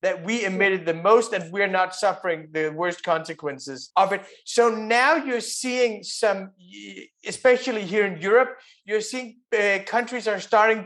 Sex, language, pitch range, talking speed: male, English, 185-230 Hz, 160 wpm